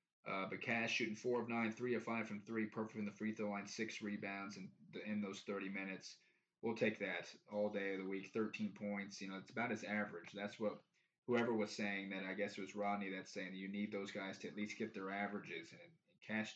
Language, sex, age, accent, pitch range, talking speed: English, male, 20-39, American, 100-110 Hz, 245 wpm